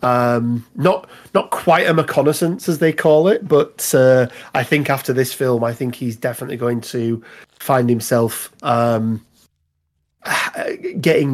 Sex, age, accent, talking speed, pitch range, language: male, 40-59, British, 145 wpm, 115-140 Hz, English